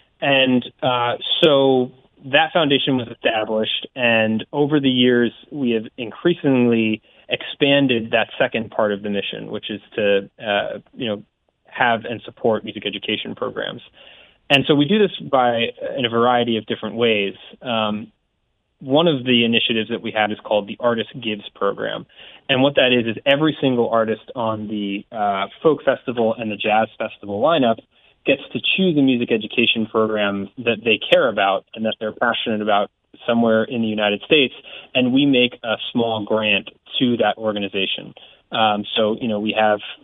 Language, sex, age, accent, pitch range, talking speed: English, male, 20-39, American, 110-125 Hz, 170 wpm